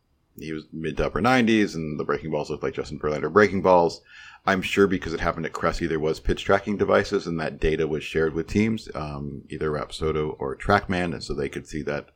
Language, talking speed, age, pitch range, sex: English, 225 wpm, 40-59, 80-90 Hz, male